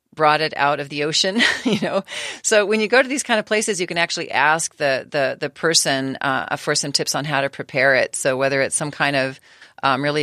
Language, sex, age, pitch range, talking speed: English, female, 40-59, 145-180 Hz, 250 wpm